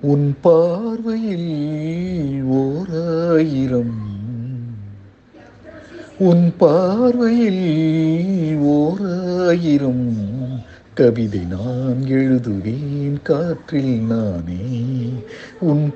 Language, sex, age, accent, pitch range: Tamil, male, 60-79, native, 125-165 Hz